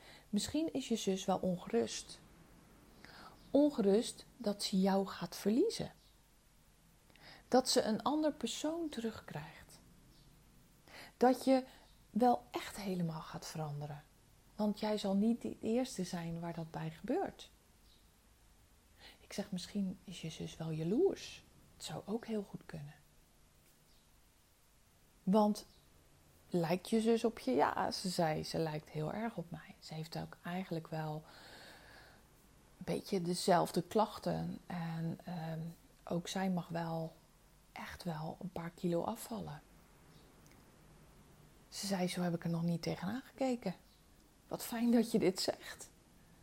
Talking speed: 130 wpm